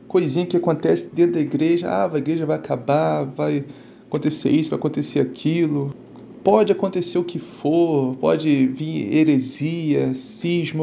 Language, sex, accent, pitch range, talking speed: Portuguese, male, Brazilian, 145-175 Hz, 145 wpm